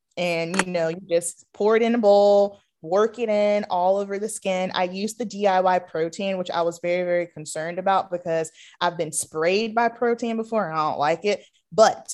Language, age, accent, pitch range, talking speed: English, 20-39, American, 175-220 Hz, 210 wpm